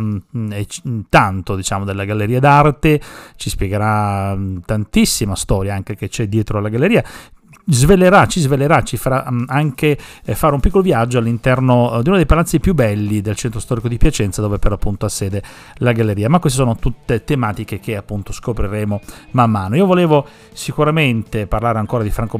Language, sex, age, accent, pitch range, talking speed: Italian, male, 40-59, native, 105-130 Hz, 165 wpm